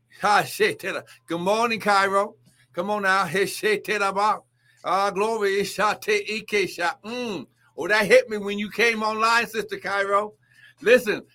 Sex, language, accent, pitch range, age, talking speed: male, English, American, 190-235 Hz, 60-79, 95 wpm